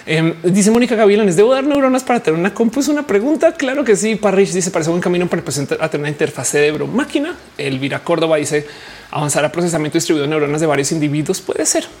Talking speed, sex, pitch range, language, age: 220 wpm, male, 155-210 Hz, Spanish, 30-49